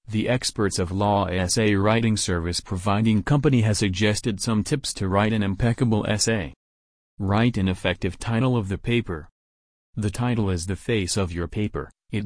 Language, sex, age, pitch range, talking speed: English, male, 30-49, 90-110 Hz, 165 wpm